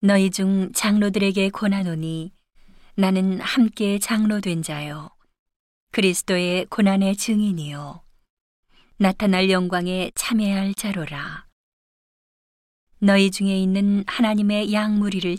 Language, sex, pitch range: Korean, female, 180-205 Hz